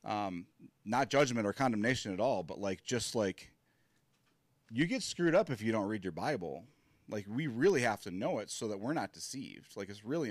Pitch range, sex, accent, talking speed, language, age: 95-125 Hz, male, American, 210 wpm, English, 30-49